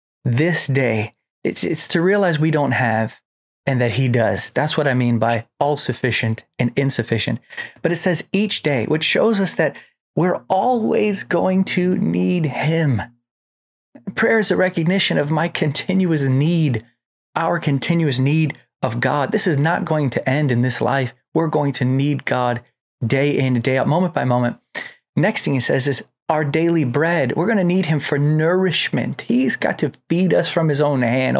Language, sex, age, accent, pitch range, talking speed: English, male, 20-39, American, 120-160 Hz, 180 wpm